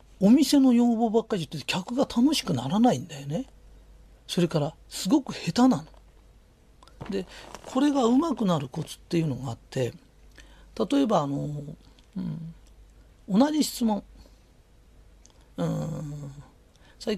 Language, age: Japanese, 40-59